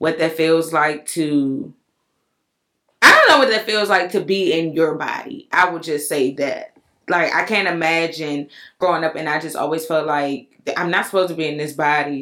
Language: English